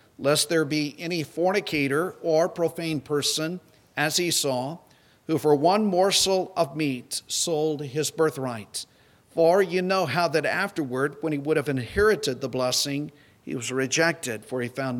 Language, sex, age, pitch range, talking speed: English, male, 50-69, 130-155 Hz, 155 wpm